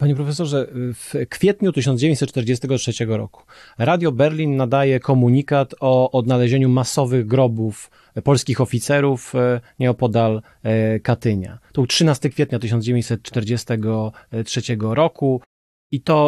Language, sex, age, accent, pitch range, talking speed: Polish, male, 30-49, native, 115-140 Hz, 90 wpm